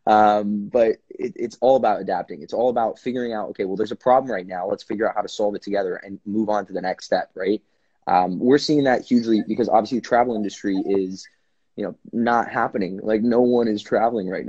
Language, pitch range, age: English, 95-120 Hz, 20-39